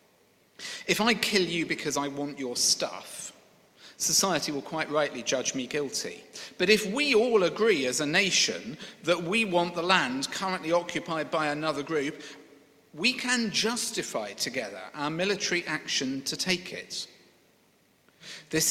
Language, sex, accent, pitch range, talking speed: English, male, British, 145-185 Hz, 145 wpm